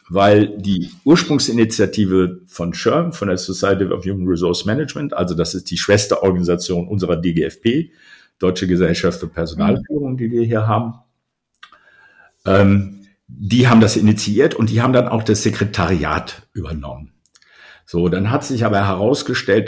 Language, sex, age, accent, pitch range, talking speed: German, male, 50-69, German, 90-110 Hz, 140 wpm